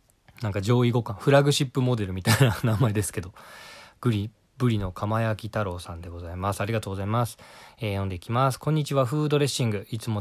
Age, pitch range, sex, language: 20-39, 105-130 Hz, male, Japanese